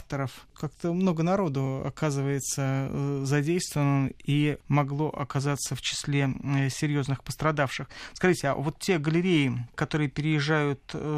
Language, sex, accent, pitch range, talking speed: Russian, male, native, 145-170 Hz, 100 wpm